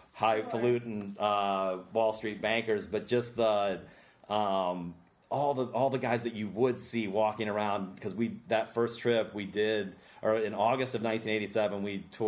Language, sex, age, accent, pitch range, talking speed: English, male, 40-59, American, 95-110 Hz, 155 wpm